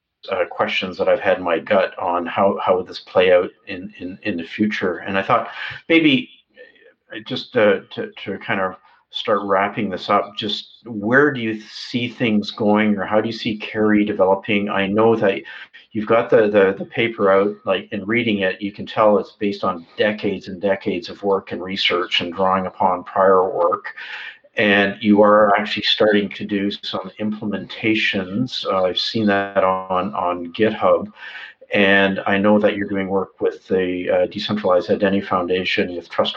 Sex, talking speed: male, 185 wpm